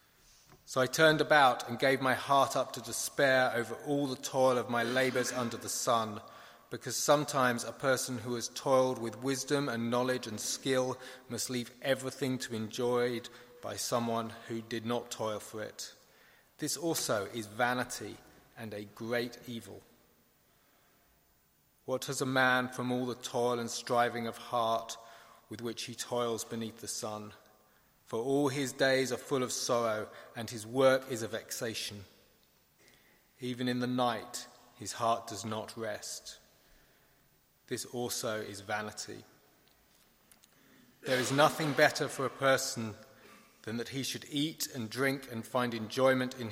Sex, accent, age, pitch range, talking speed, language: male, British, 30-49, 115-130 Hz, 155 wpm, English